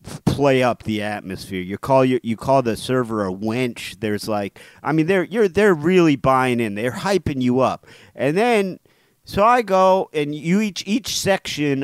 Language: English